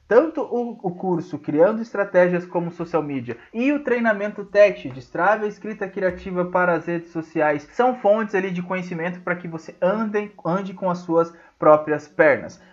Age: 20-39